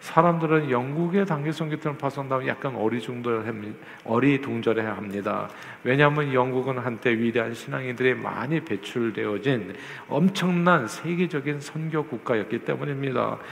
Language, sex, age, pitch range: Korean, male, 40-59, 115-150 Hz